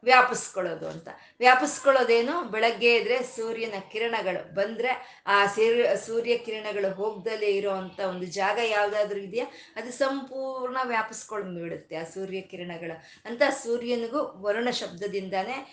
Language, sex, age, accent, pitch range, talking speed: Kannada, female, 20-39, native, 205-265 Hz, 105 wpm